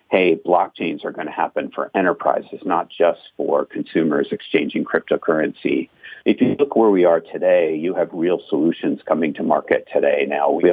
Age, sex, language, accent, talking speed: 50-69, male, English, American, 175 wpm